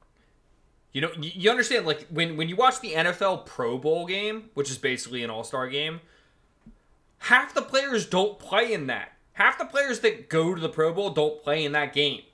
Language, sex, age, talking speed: English, male, 20-39, 195 wpm